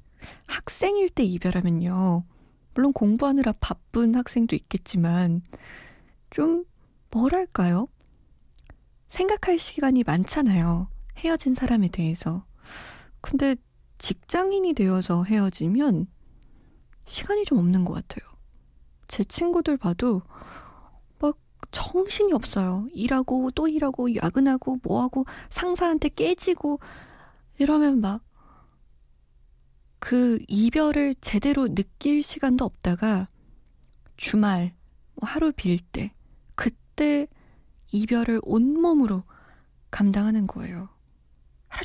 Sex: female